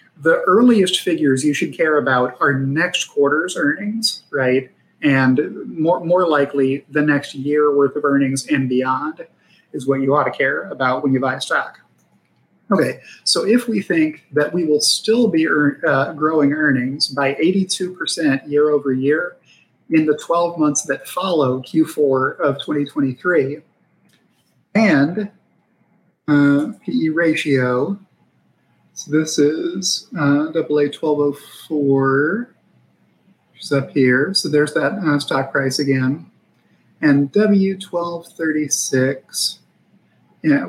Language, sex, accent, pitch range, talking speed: English, male, American, 135-160 Hz, 125 wpm